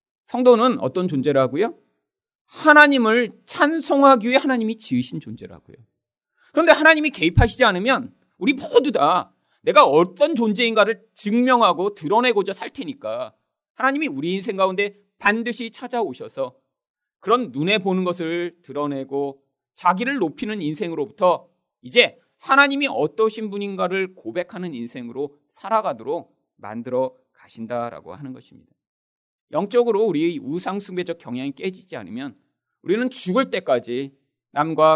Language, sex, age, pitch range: Korean, male, 40-59, 140-235 Hz